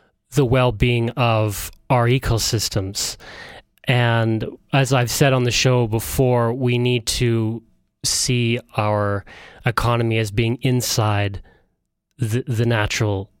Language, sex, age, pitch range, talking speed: English, male, 30-49, 110-130 Hz, 110 wpm